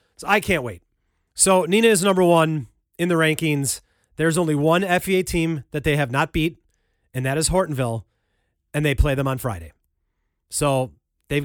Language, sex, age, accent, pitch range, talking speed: English, male, 30-49, American, 125-175 Hz, 180 wpm